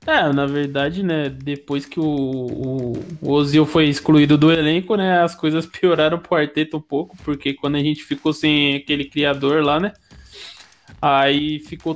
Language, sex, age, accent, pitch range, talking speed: Portuguese, male, 20-39, Brazilian, 145-180 Hz, 170 wpm